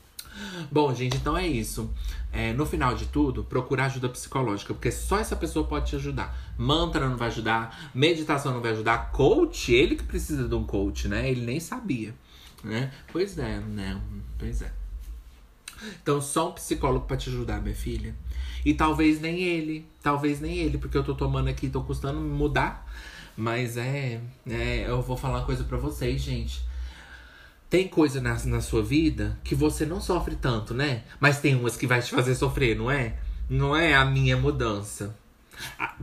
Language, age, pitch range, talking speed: Portuguese, 20-39, 105-155 Hz, 180 wpm